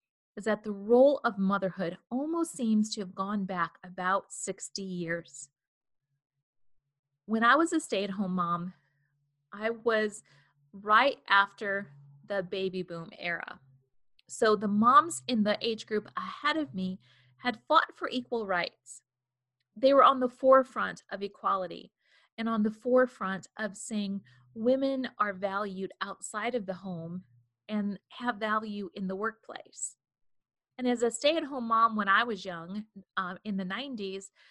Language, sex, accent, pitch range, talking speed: English, female, American, 190-240 Hz, 145 wpm